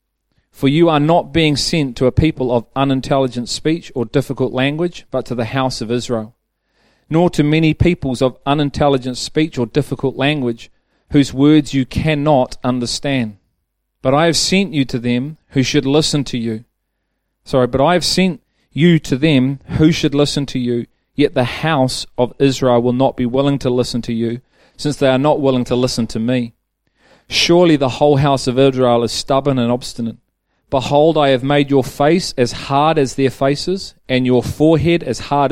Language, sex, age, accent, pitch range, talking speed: English, male, 40-59, Australian, 125-150 Hz, 185 wpm